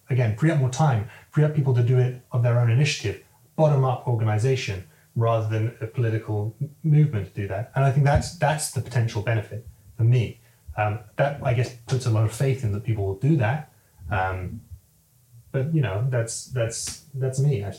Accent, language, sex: British, Danish, male